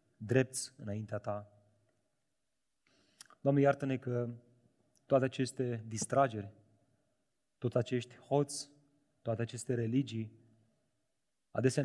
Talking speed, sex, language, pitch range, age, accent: 80 wpm, male, Romanian, 110-135 Hz, 30-49, native